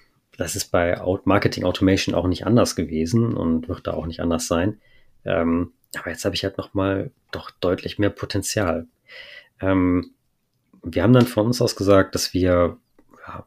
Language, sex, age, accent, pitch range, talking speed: German, male, 30-49, German, 90-100 Hz, 180 wpm